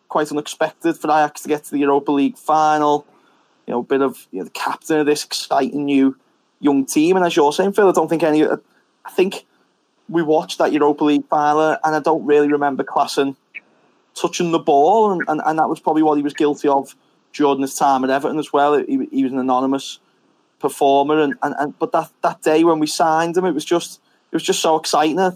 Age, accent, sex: 20-39, British, male